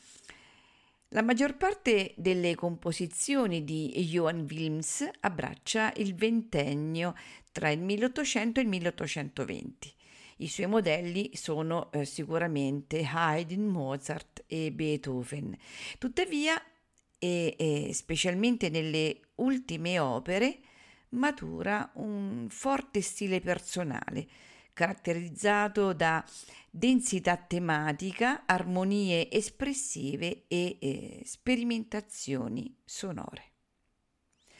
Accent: native